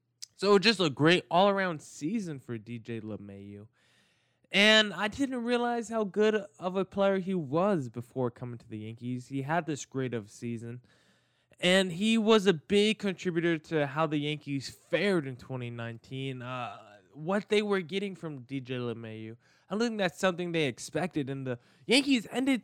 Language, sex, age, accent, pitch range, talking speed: English, male, 20-39, American, 130-185 Hz, 165 wpm